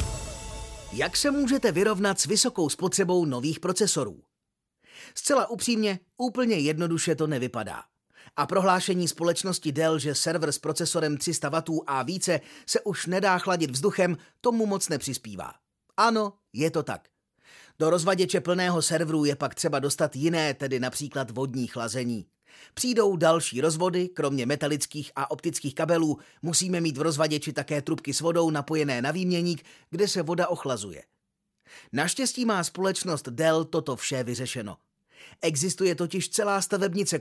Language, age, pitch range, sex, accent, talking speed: Czech, 30-49, 150-185 Hz, male, native, 140 wpm